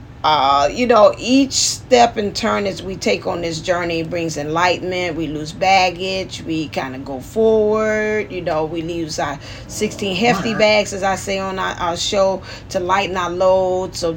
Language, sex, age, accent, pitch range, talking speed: English, female, 40-59, American, 145-200 Hz, 180 wpm